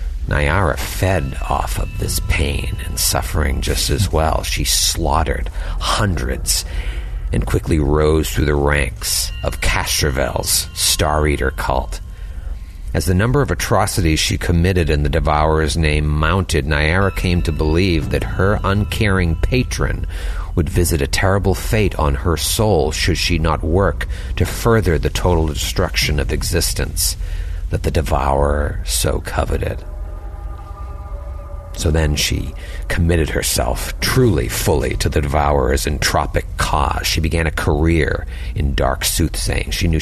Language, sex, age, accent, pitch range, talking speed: English, male, 50-69, American, 75-90 Hz, 135 wpm